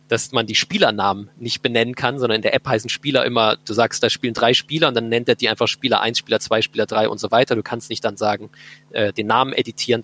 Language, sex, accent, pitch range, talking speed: German, male, German, 115-135 Hz, 265 wpm